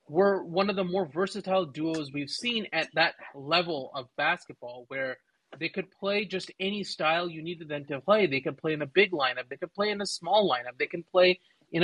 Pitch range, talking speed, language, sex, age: 145-190 Hz, 230 wpm, English, male, 30-49